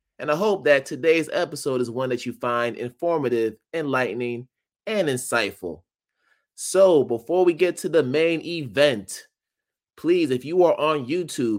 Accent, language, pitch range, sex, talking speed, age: American, English, 120-150 Hz, male, 150 wpm, 20-39